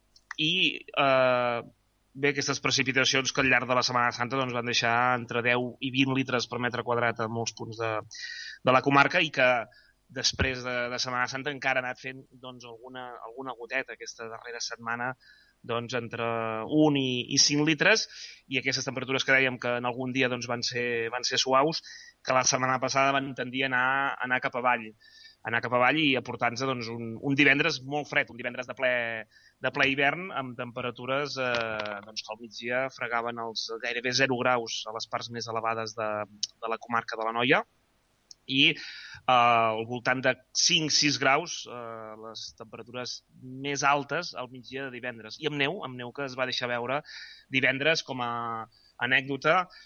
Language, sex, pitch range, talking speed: Spanish, male, 115-135 Hz, 185 wpm